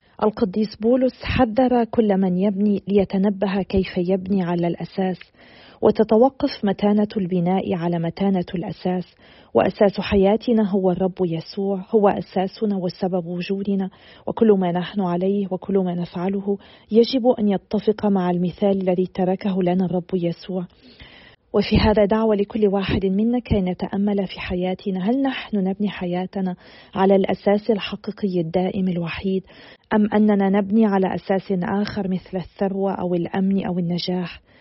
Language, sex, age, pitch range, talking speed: Arabic, female, 40-59, 185-210 Hz, 130 wpm